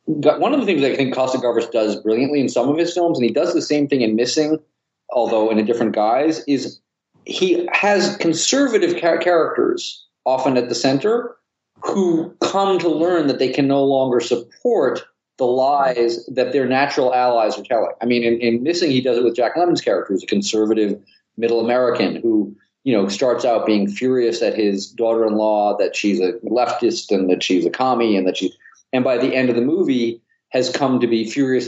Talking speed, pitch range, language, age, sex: 205 wpm, 110-145 Hz, English, 40-59, male